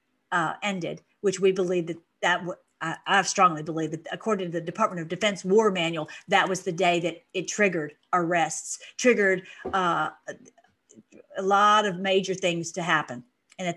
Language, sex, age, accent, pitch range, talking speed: English, female, 40-59, American, 180-230 Hz, 175 wpm